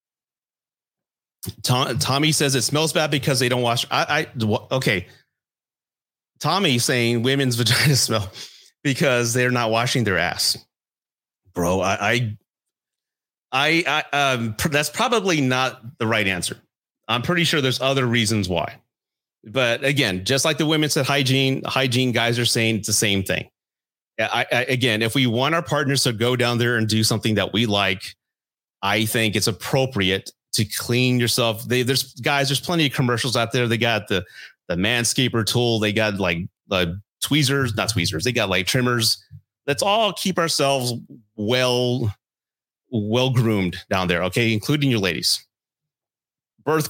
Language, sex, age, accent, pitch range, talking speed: English, male, 30-49, American, 110-140 Hz, 160 wpm